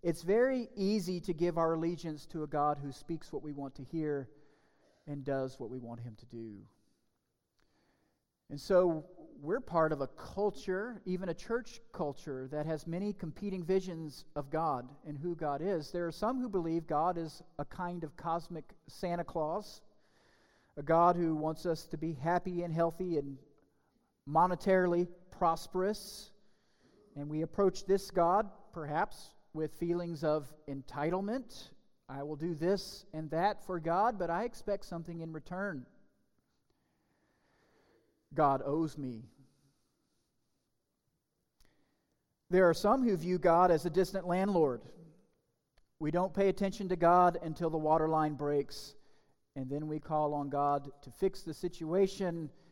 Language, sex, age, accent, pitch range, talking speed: English, male, 40-59, American, 145-185 Hz, 150 wpm